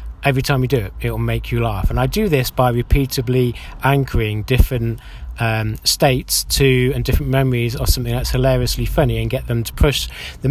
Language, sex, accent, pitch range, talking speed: English, male, British, 115-140 Hz, 195 wpm